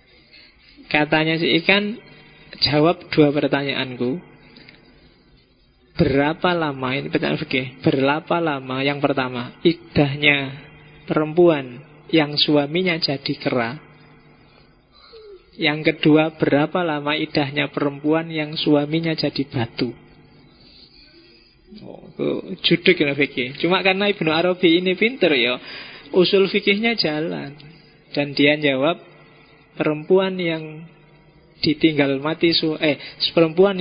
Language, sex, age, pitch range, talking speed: Indonesian, male, 20-39, 140-165 Hz, 90 wpm